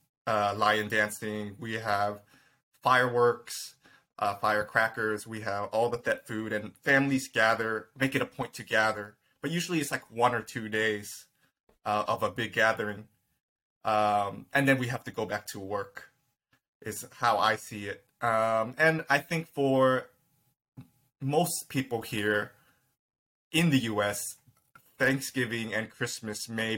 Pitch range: 110-130 Hz